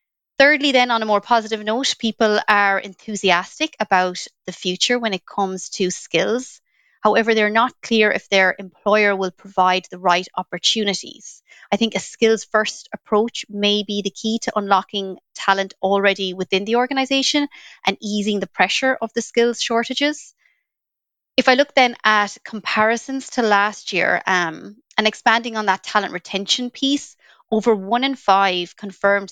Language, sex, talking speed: English, female, 160 wpm